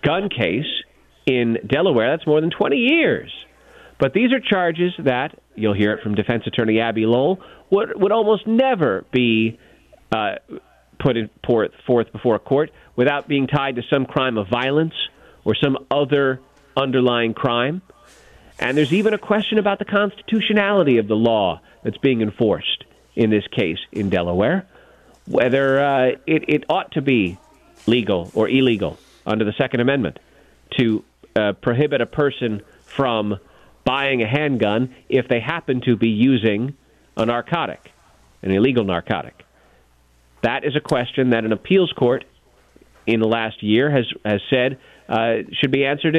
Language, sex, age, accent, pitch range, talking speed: English, male, 40-59, American, 115-145 Hz, 155 wpm